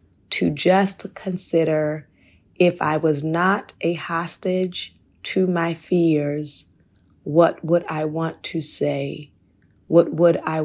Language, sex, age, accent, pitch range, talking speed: English, female, 30-49, American, 140-165 Hz, 120 wpm